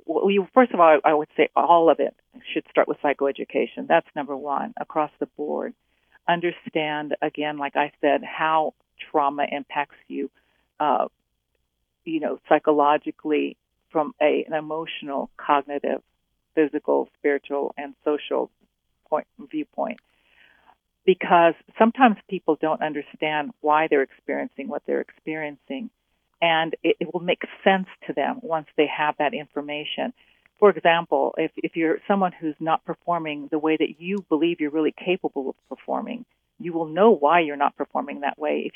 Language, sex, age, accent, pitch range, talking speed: English, female, 50-69, American, 150-180 Hz, 150 wpm